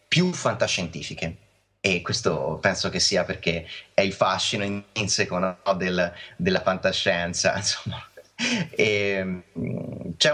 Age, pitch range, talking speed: 30-49, 95-130 Hz, 115 wpm